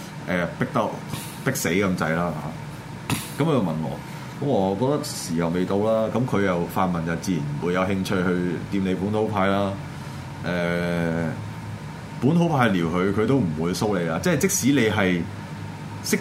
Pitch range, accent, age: 90-125 Hz, native, 20-39